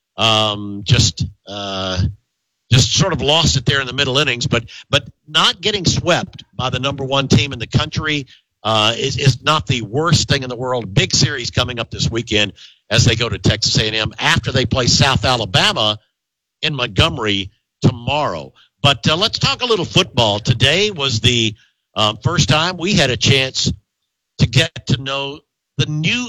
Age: 50-69